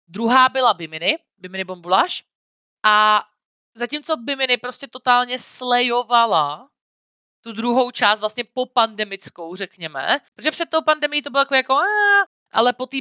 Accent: native